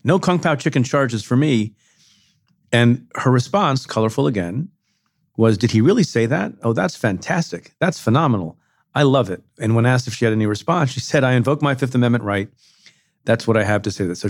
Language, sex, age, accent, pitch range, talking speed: English, male, 40-59, American, 110-140 Hz, 205 wpm